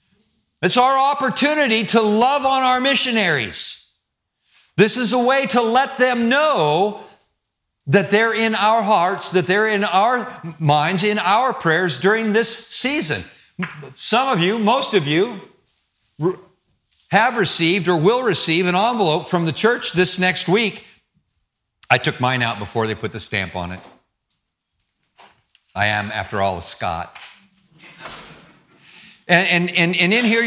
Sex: male